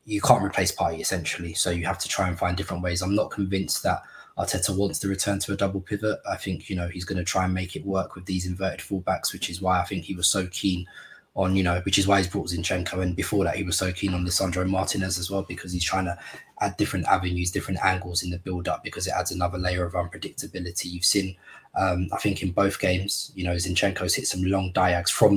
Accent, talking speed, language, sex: British, 255 wpm, English, male